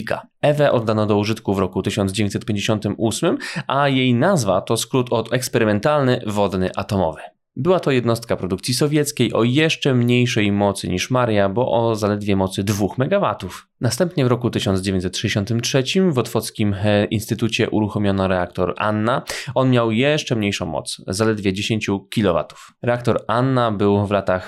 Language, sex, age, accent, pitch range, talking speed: Polish, male, 20-39, native, 100-125 Hz, 135 wpm